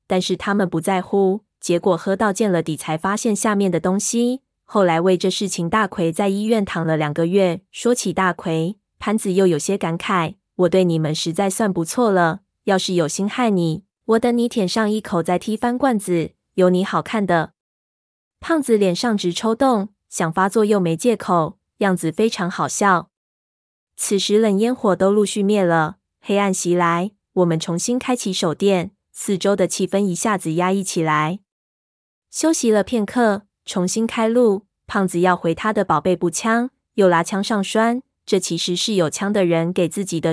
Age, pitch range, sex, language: 20-39, 175-215 Hz, female, Chinese